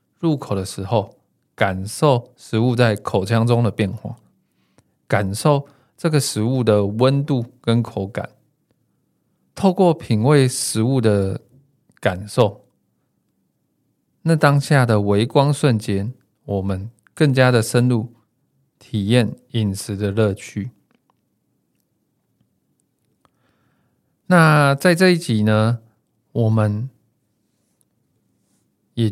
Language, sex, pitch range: Chinese, male, 105-135 Hz